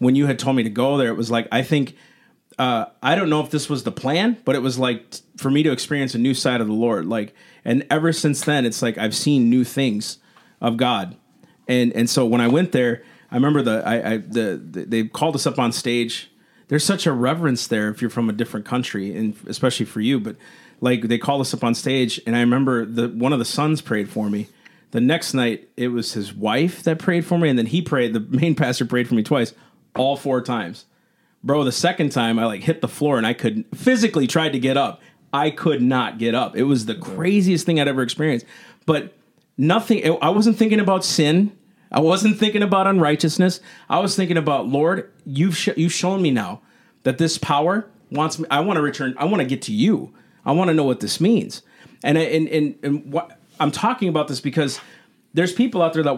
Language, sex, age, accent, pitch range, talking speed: English, male, 40-59, American, 120-170 Hz, 235 wpm